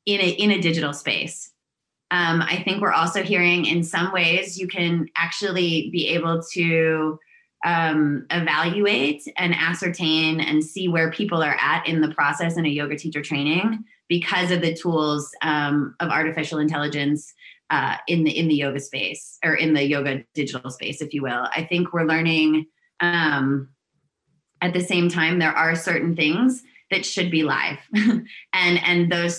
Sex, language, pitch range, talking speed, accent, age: female, English, 150-175 Hz, 170 wpm, American, 20-39